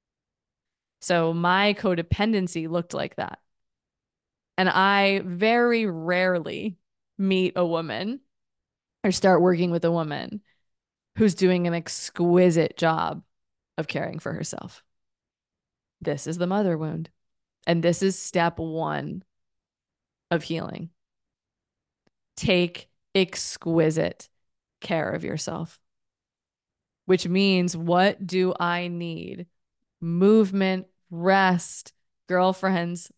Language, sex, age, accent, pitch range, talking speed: English, female, 20-39, American, 170-205 Hz, 100 wpm